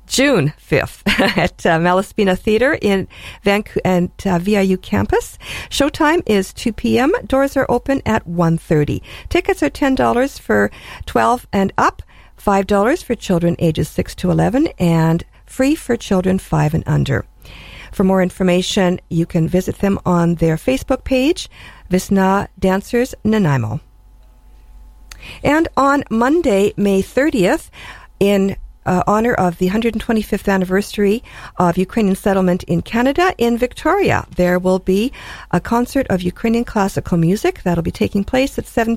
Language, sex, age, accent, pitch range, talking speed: English, female, 50-69, American, 175-245 Hz, 140 wpm